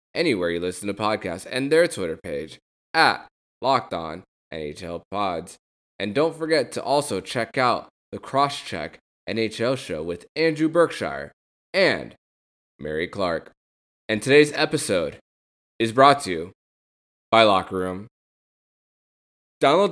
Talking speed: 120 wpm